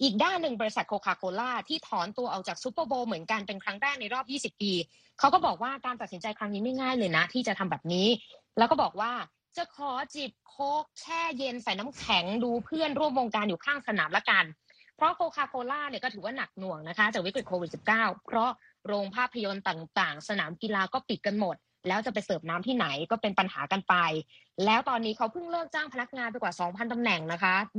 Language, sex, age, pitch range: Thai, female, 20-39, 185-255 Hz